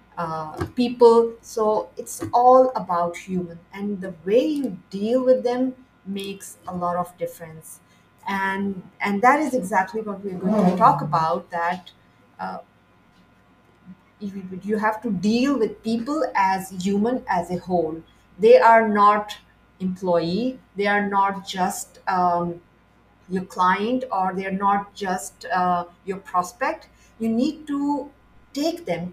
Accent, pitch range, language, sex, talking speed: Indian, 180-230 Hz, English, female, 140 wpm